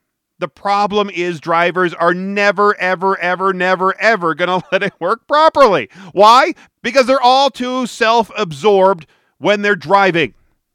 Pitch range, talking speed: 155-190 Hz, 140 wpm